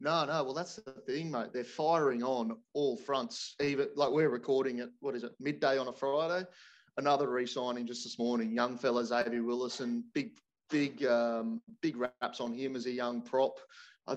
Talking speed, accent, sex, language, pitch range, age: 190 wpm, Australian, male, English, 120-140 Hz, 30-49